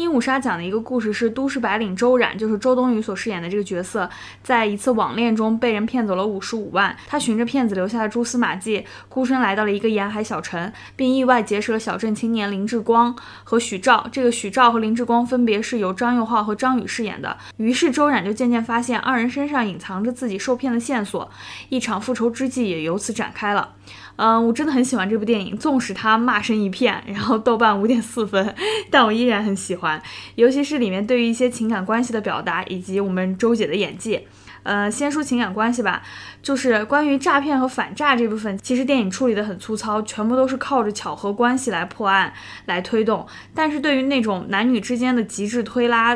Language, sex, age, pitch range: Chinese, female, 20-39, 205-250 Hz